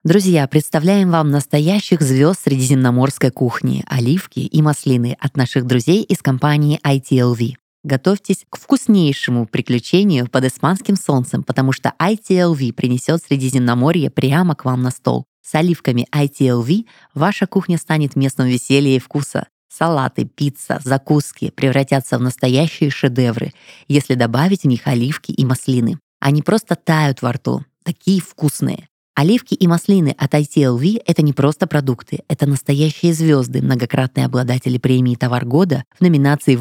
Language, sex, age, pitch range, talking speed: Russian, female, 20-39, 130-165 Hz, 140 wpm